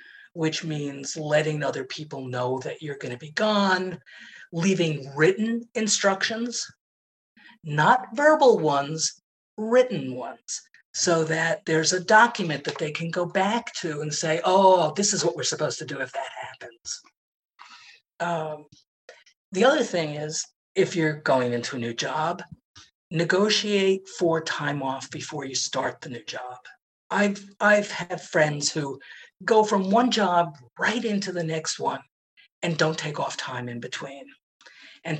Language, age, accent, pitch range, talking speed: English, 50-69, American, 150-195 Hz, 150 wpm